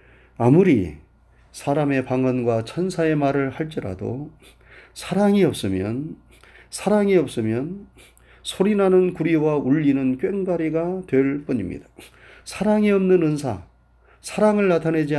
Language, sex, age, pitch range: Korean, male, 40-59, 120-160 Hz